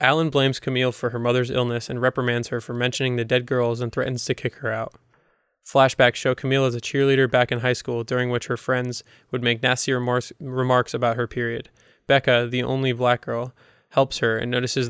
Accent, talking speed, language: American, 205 wpm, English